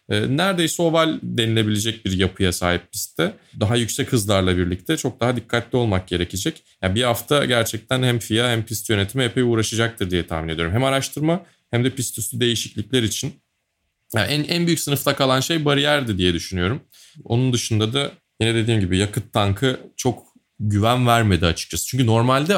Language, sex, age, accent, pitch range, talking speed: Turkish, male, 30-49, native, 100-145 Hz, 160 wpm